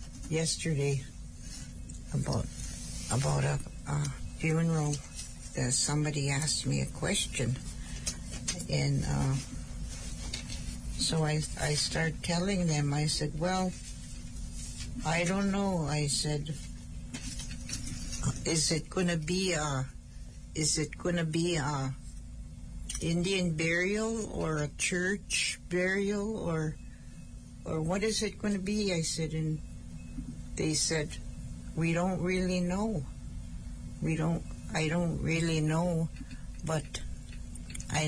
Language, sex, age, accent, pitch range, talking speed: English, female, 60-79, American, 135-170 Hz, 110 wpm